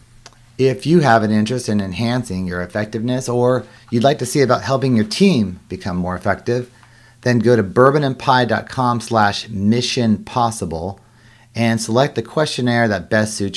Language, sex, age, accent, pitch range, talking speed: English, male, 40-59, American, 95-120 Hz, 155 wpm